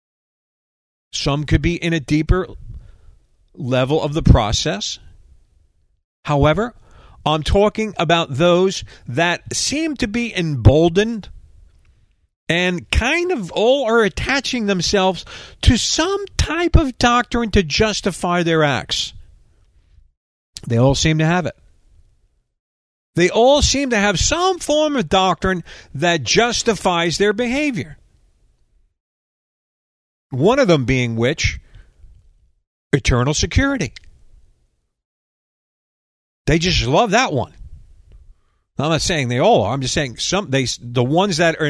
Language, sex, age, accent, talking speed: English, male, 50-69, American, 120 wpm